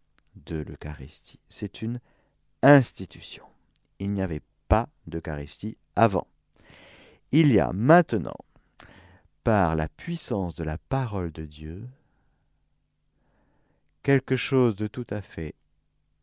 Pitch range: 95-140 Hz